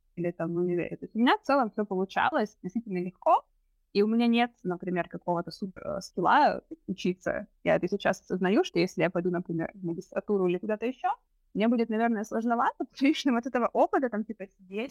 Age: 20-39